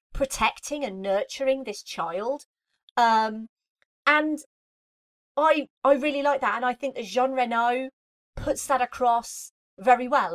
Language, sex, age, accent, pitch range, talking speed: English, female, 30-49, British, 220-295 Hz, 135 wpm